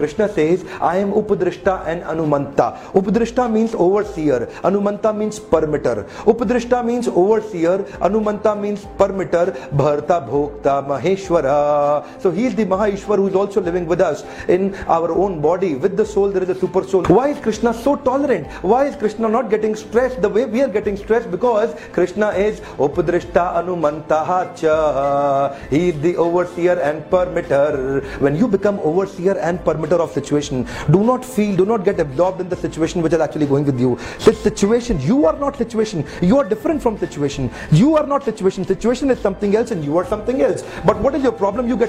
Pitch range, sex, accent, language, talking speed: 165-220 Hz, male, native, Hindi, 185 wpm